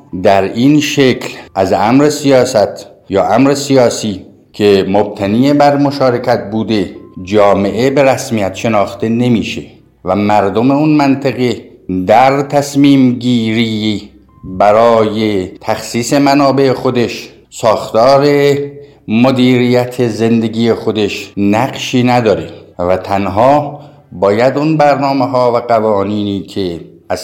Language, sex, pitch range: Persian, male, 105-135 Hz